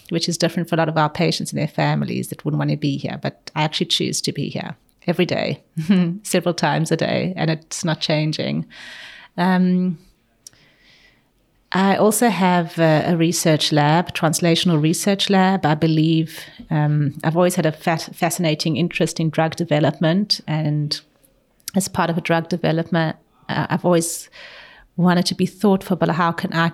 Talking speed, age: 170 wpm, 30-49